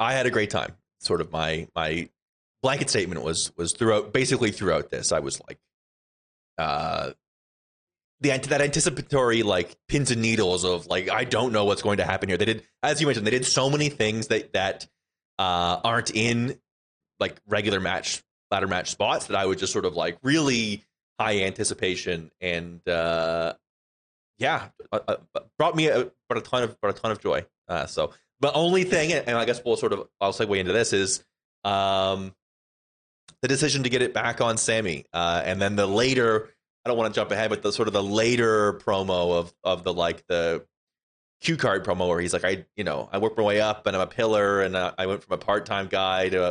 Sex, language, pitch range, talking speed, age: male, English, 95-125 Hz, 205 wpm, 20-39